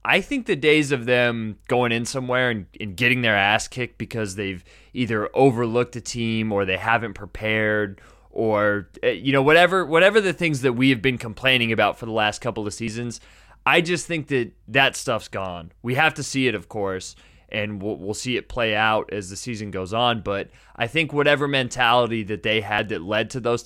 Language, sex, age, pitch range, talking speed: English, male, 20-39, 110-135 Hz, 210 wpm